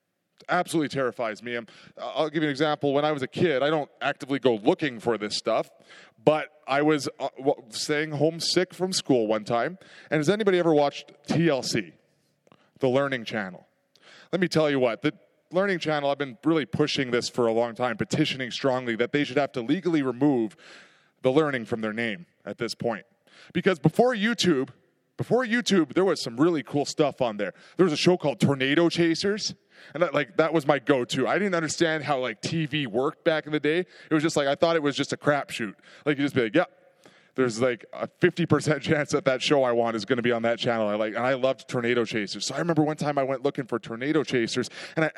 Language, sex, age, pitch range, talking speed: English, male, 20-39, 125-165 Hz, 220 wpm